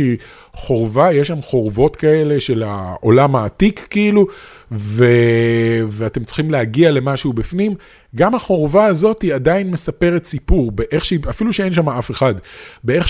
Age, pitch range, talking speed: 30-49, 125-175 Hz, 140 wpm